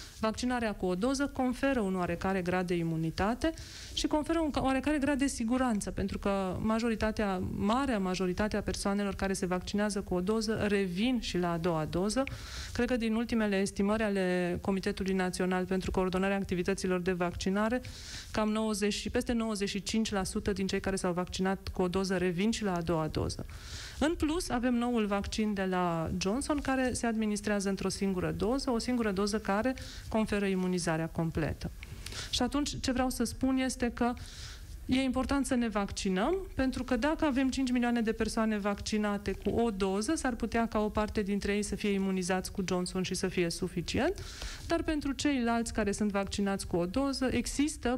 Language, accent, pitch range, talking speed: Romanian, native, 185-240 Hz, 175 wpm